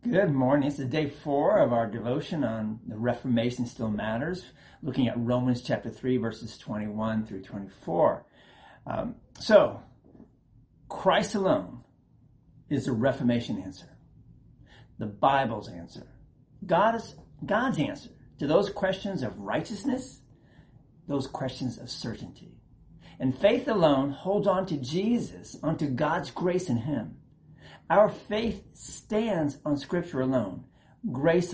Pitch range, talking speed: 120-165 Hz, 125 wpm